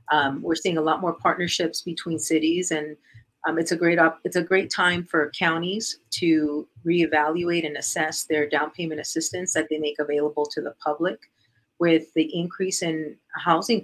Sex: female